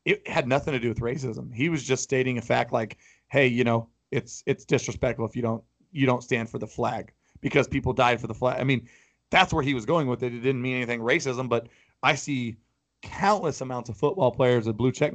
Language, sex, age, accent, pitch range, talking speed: English, male, 30-49, American, 125-155 Hz, 240 wpm